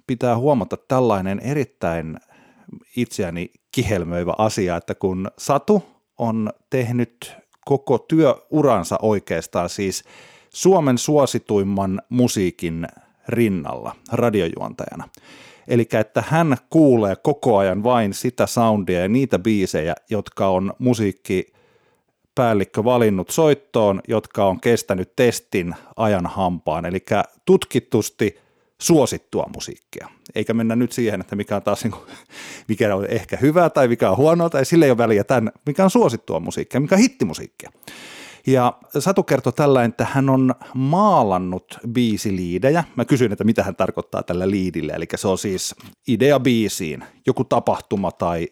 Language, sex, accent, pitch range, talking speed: Finnish, male, native, 100-130 Hz, 125 wpm